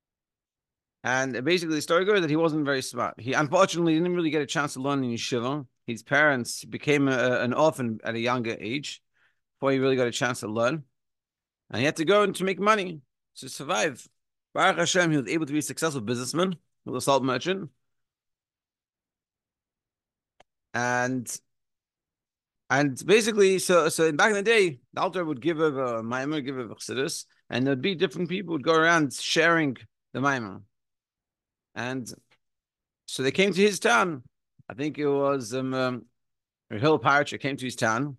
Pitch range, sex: 120-165 Hz, male